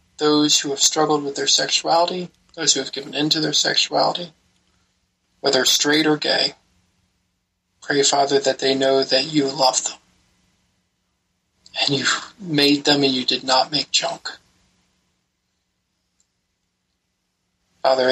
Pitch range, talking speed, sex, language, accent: 90-145 Hz, 130 wpm, male, English, American